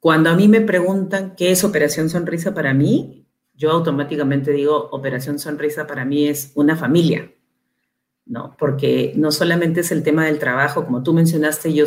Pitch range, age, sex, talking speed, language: 135-155 Hz, 40-59, female, 170 wpm, English